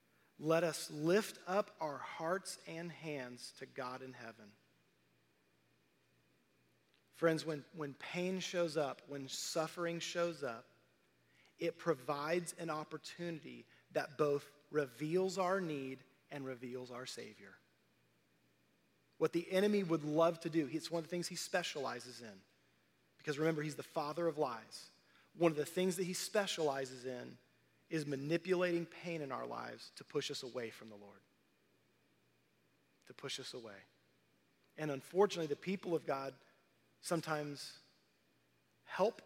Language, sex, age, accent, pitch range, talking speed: English, male, 40-59, American, 135-170 Hz, 140 wpm